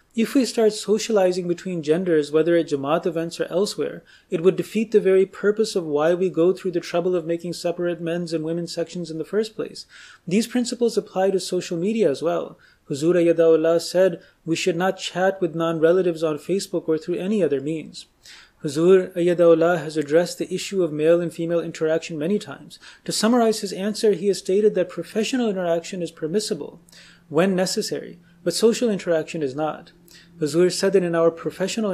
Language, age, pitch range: English, 30-49, 165-195 Hz